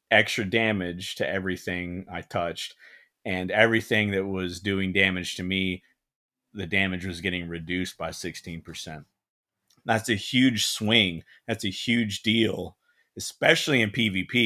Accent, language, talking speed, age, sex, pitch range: American, English, 135 wpm, 30-49, male, 95-130 Hz